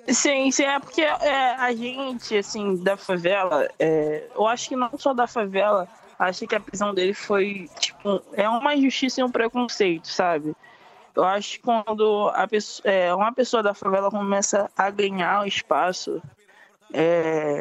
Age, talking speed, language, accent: 20-39, 165 wpm, Portuguese, Brazilian